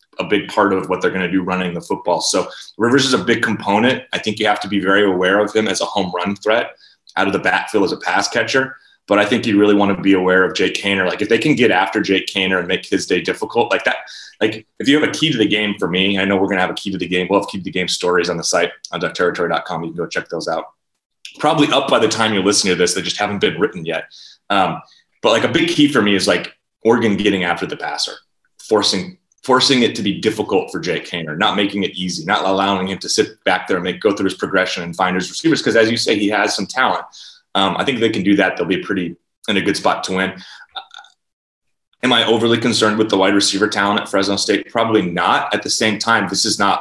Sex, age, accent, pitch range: male, 30-49, American, 95-110 Hz